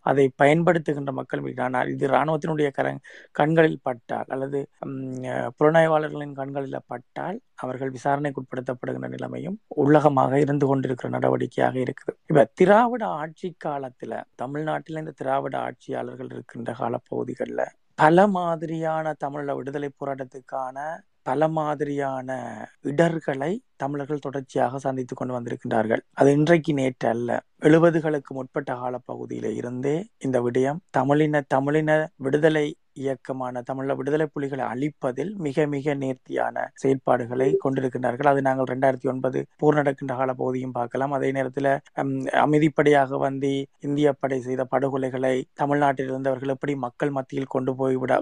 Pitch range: 130-150 Hz